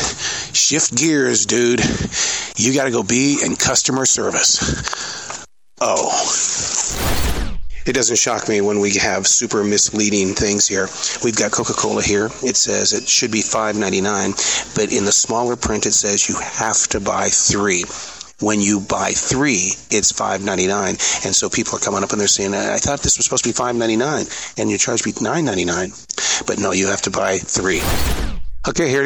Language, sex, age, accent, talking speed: English, male, 40-59, American, 170 wpm